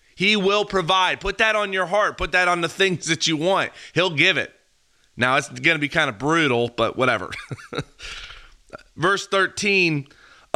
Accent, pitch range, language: American, 150-200 Hz, English